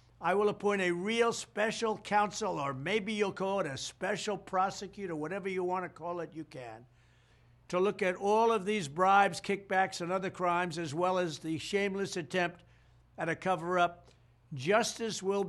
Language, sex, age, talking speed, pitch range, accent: English, male, 60-79, 175 wpm, 140-185 Hz, American